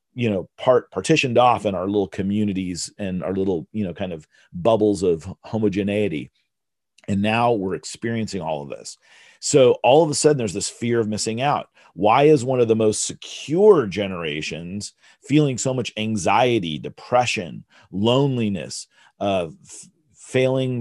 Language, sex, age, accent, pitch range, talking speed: English, male, 40-59, American, 105-140 Hz, 155 wpm